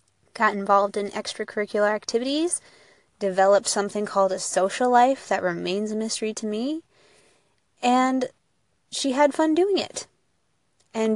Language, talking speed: English, 130 wpm